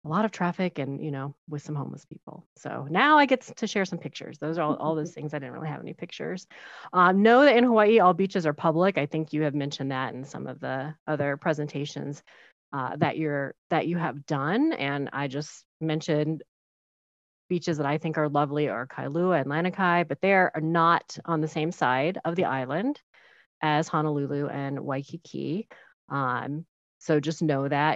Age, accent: 30-49, American